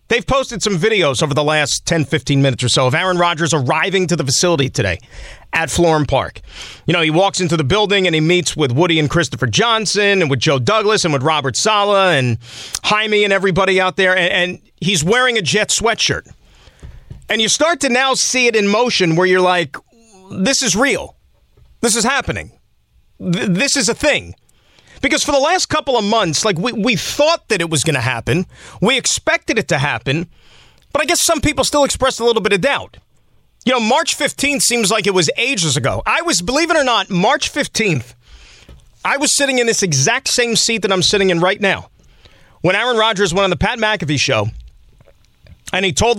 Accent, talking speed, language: American, 205 wpm, English